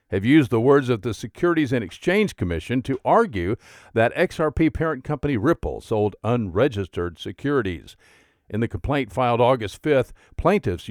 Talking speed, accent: 150 wpm, American